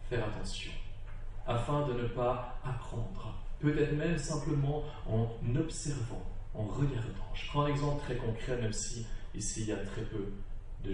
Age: 40-59